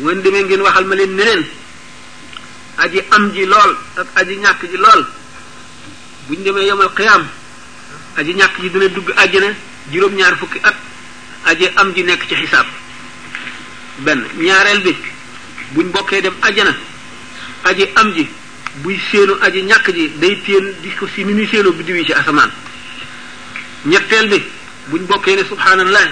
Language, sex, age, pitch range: French, male, 50-69, 190-215 Hz